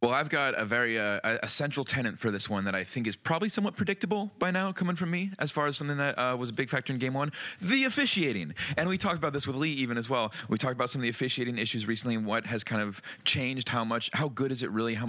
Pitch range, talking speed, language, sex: 105-140 Hz, 285 wpm, English, male